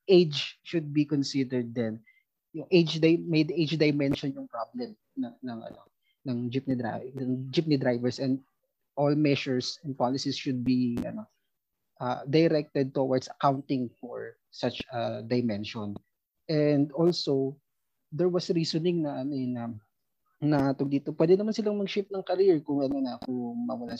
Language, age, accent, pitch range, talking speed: Filipino, 20-39, native, 125-165 Hz, 145 wpm